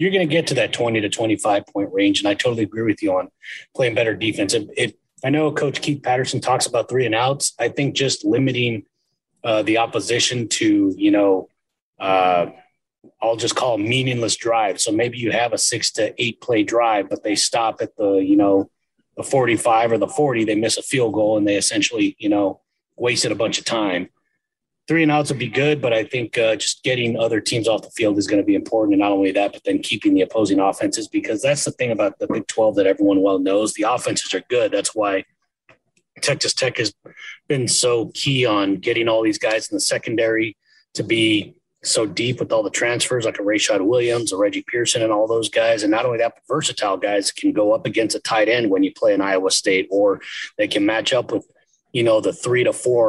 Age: 30-49